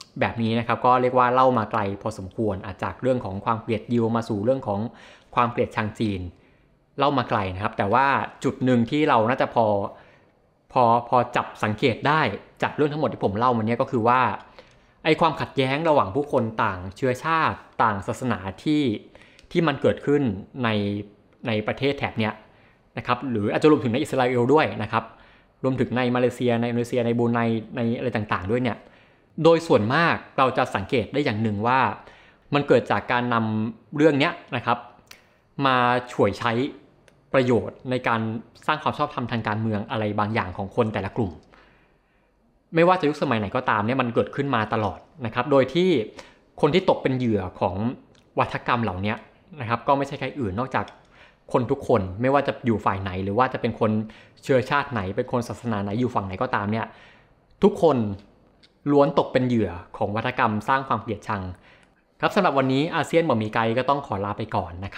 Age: 20-39